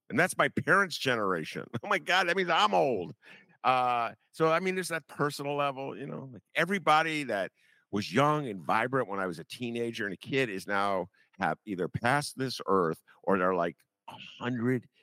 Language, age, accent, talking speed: English, 50-69, American, 190 wpm